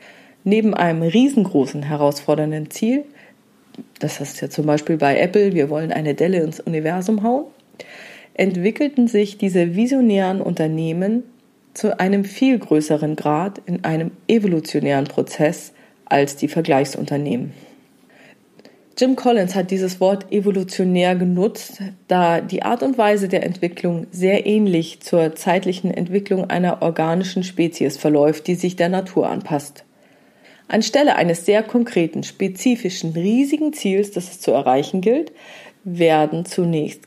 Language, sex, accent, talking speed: German, female, German, 125 wpm